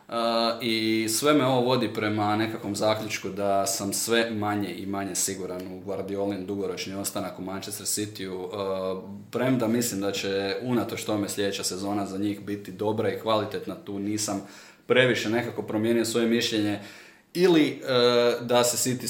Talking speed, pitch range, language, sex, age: 160 wpm, 100-115 Hz, Croatian, male, 20-39